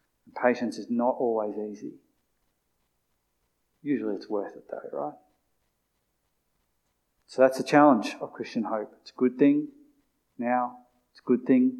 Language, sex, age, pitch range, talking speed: English, male, 30-49, 115-140 Hz, 135 wpm